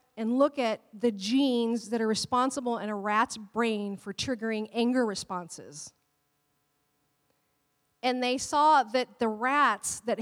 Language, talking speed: English, 135 wpm